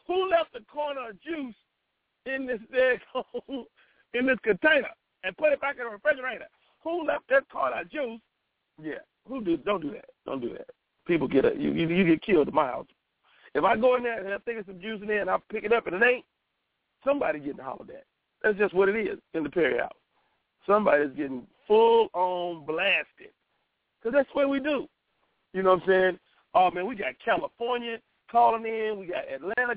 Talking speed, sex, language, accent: 210 wpm, male, English, American